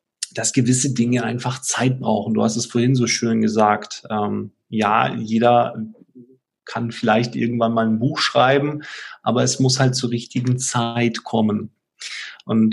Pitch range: 115-135 Hz